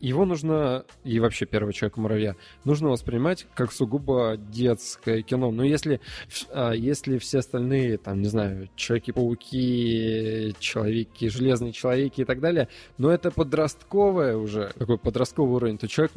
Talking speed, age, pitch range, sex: 145 wpm, 20-39, 110-145 Hz, male